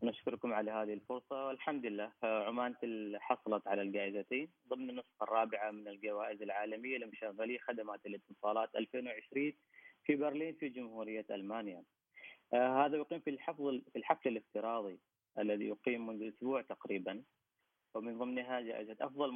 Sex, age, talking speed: female, 30-49, 125 wpm